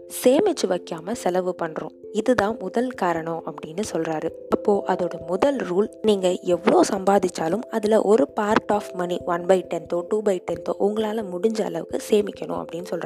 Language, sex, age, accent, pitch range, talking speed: Tamil, female, 20-39, native, 175-230 Hz, 145 wpm